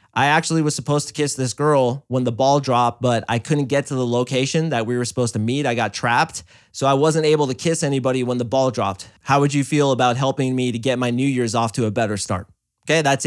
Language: English